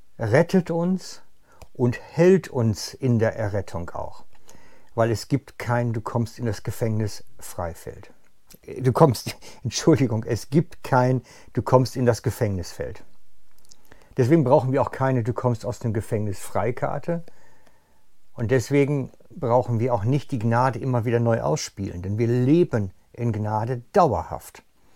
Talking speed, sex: 135 wpm, male